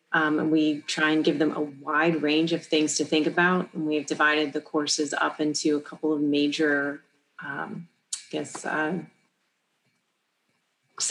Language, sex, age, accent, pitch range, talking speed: English, female, 30-49, American, 150-175 Hz, 155 wpm